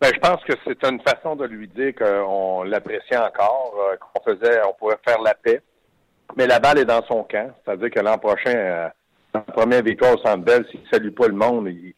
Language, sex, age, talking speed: French, male, 60-79, 225 wpm